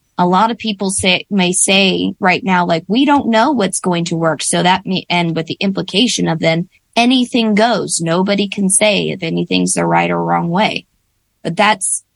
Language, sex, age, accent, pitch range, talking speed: English, female, 20-39, American, 165-215 Hz, 195 wpm